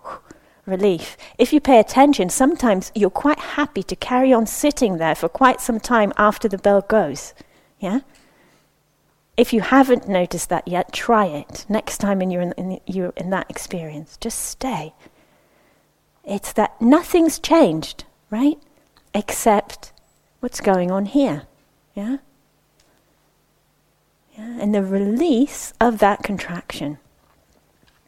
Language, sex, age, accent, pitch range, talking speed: English, female, 30-49, British, 185-245 Hz, 130 wpm